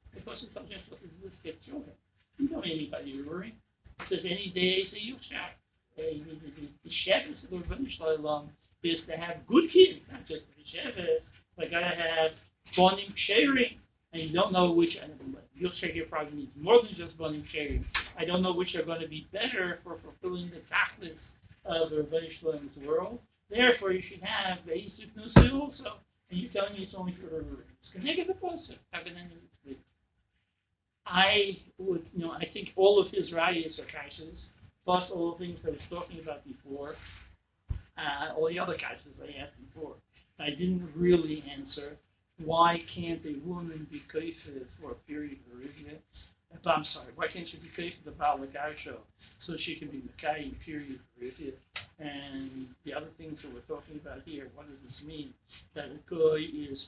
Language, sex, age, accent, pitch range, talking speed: English, male, 60-79, American, 145-180 Hz, 175 wpm